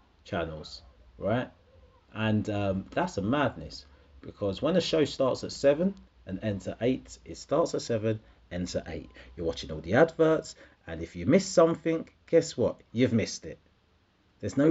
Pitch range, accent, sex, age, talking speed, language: 90-130 Hz, British, male, 30-49, 170 wpm, English